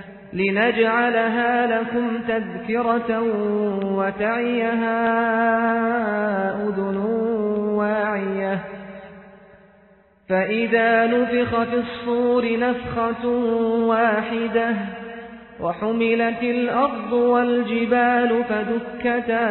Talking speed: 45 wpm